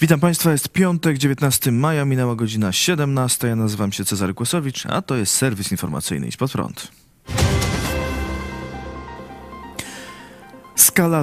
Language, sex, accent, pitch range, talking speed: Polish, male, native, 105-135 Hz, 120 wpm